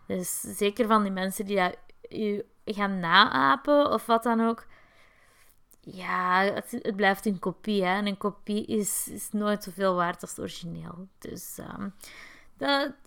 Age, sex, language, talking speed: 20-39, female, Dutch, 155 wpm